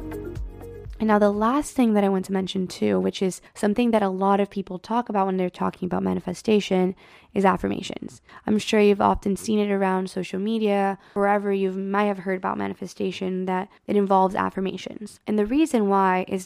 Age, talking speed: 20-39, 195 wpm